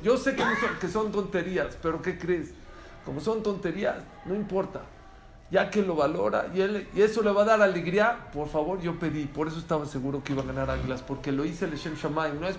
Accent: Mexican